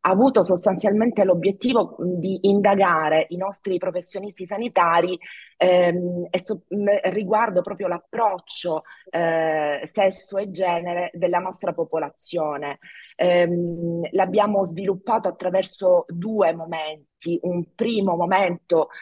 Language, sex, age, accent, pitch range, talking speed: Italian, female, 30-49, native, 165-200 Hz, 100 wpm